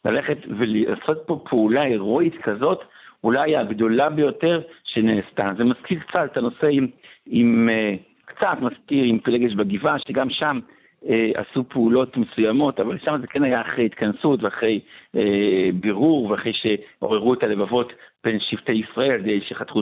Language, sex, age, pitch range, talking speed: Hebrew, male, 60-79, 115-155 Hz, 140 wpm